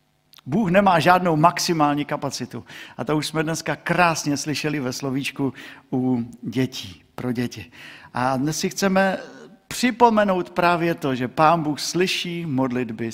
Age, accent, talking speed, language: 50-69, native, 135 wpm, Czech